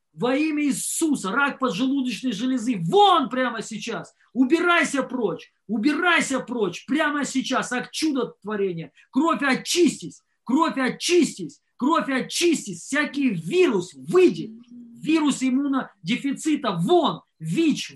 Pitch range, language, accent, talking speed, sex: 210-270 Hz, Russian, native, 100 wpm, male